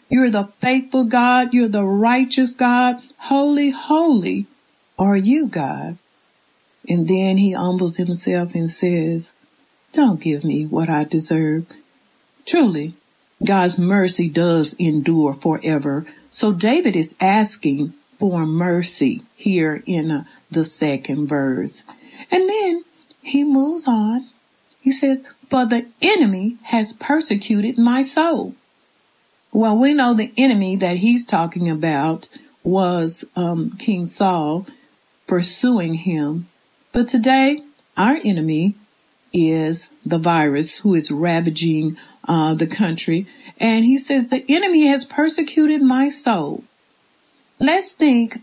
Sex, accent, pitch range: female, American, 170-260 Hz